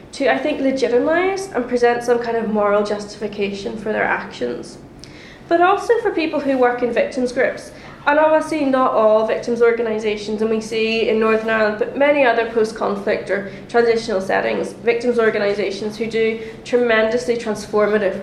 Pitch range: 220-290 Hz